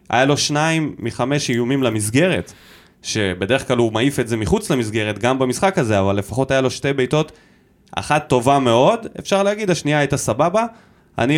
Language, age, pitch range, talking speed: Hebrew, 20-39, 120-170 Hz, 170 wpm